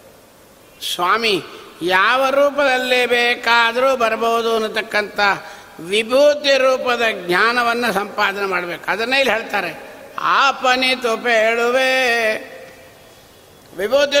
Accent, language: native, Kannada